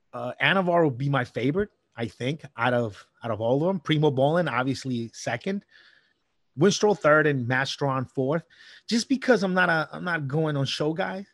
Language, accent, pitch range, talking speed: English, American, 130-160 Hz, 185 wpm